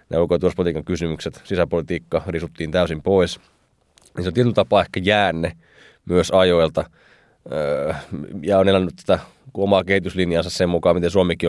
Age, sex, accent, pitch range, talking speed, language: 30-49, male, native, 90-105 Hz, 135 wpm, Finnish